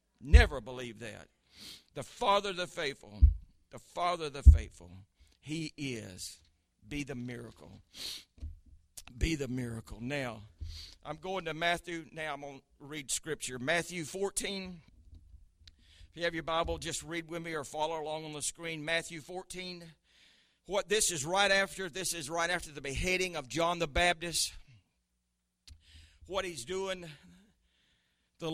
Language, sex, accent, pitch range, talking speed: English, male, American, 105-170 Hz, 145 wpm